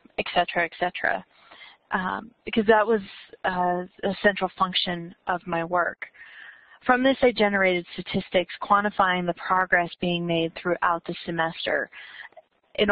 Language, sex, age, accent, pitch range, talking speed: English, female, 30-49, American, 175-205 Hz, 135 wpm